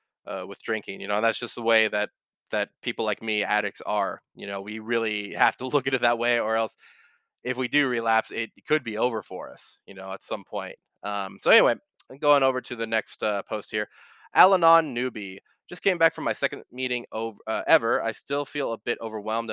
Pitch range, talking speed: 110-140 Hz, 230 wpm